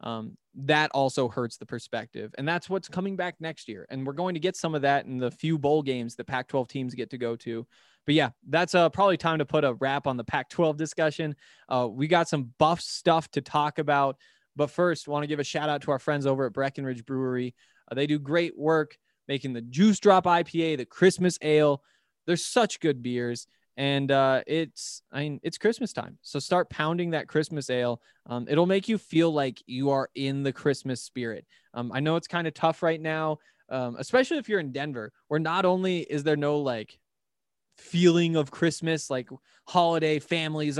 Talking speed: 210 wpm